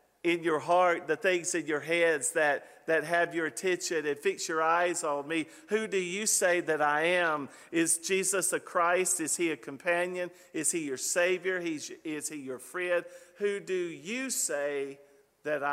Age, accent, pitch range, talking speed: 50-69, American, 145-185 Hz, 185 wpm